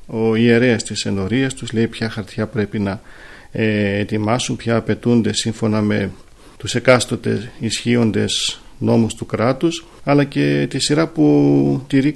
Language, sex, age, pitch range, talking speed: Greek, male, 40-59, 110-130 Hz, 135 wpm